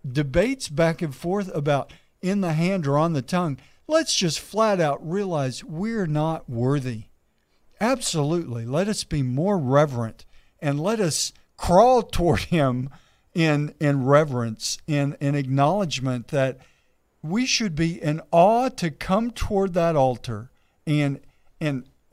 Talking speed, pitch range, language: 140 wpm, 130-175 Hz, English